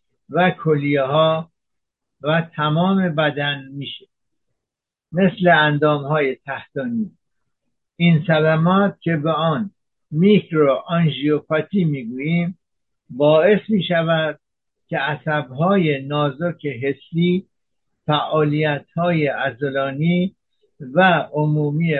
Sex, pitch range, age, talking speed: male, 145-175 Hz, 60-79, 80 wpm